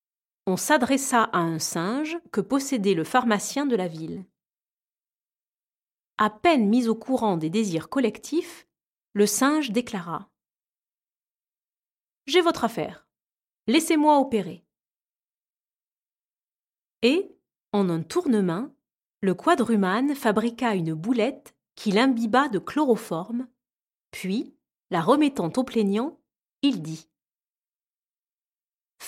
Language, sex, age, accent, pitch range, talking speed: French, female, 30-49, French, 195-275 Hz, 105 wpm